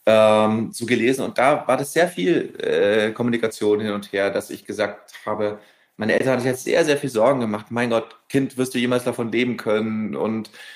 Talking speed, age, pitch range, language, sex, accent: 225 wpm, 30-49, 120-145 Hz, German, male, German